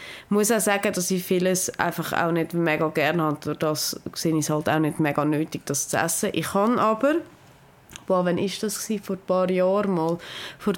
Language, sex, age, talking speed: German, female, 20-39, 195 wpm